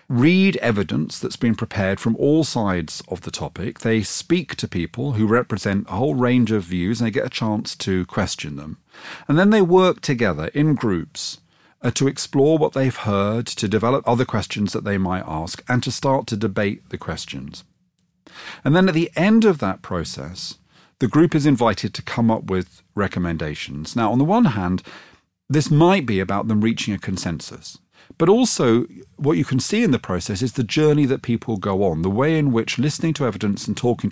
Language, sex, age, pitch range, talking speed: English, male, 40-59, 95-135 Hz, 200 wpm